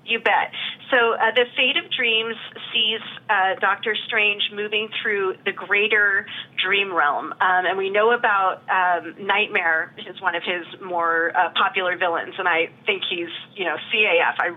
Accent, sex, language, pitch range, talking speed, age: American, female, English, 170-210 Hz, 175 wpm, 30-49